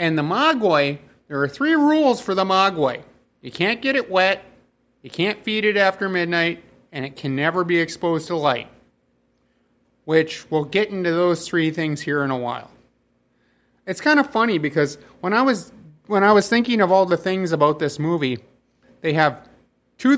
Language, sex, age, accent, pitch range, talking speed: English, male, 30-49, American, 150-205 Hz, 185 wpm